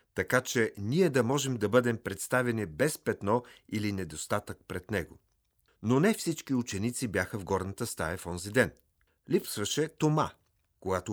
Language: Bulgarian